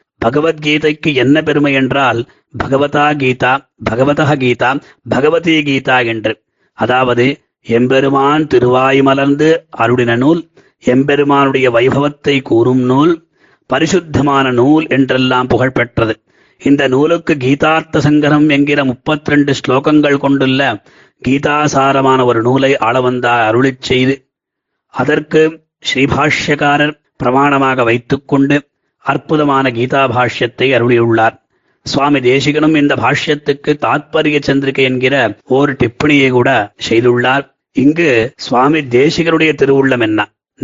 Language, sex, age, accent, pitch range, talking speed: Tamil, male, 30-49, native, 125-150 Hz, 95 wpm